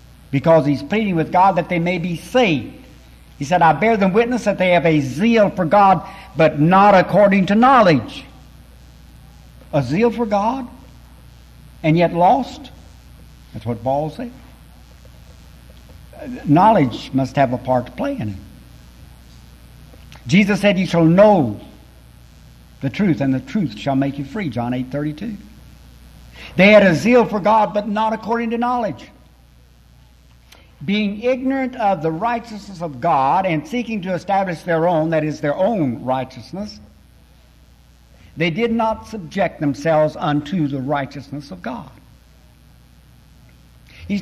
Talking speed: 145 wpm